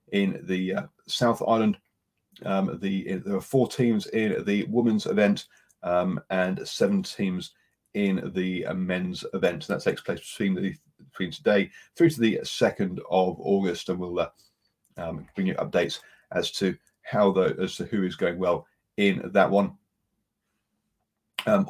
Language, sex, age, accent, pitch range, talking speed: English, male, 30-49, British, 95-150 Hz, 160 wpm